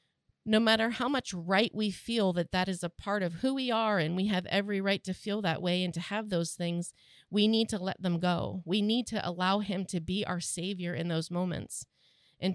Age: 40-59